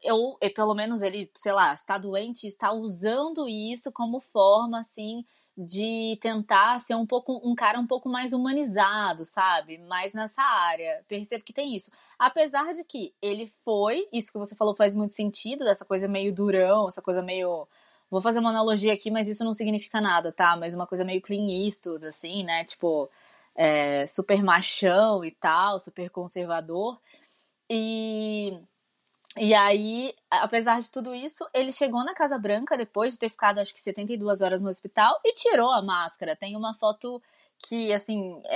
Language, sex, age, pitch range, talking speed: Portuguese, female, 20-39, 195-230 Hz, 170 wpm